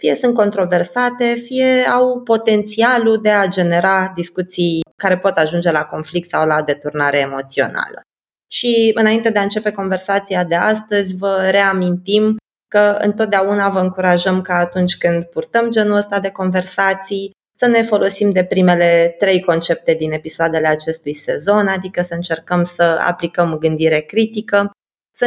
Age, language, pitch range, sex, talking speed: 20-39, Romanian, 165-205 Hz, female, 145 wpm